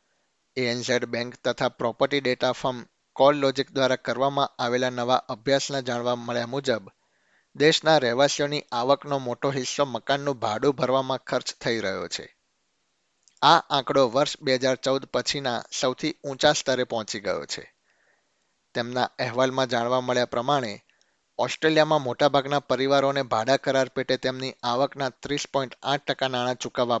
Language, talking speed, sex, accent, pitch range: Gujarati, 110 wpm, male, native, 125-140 Hz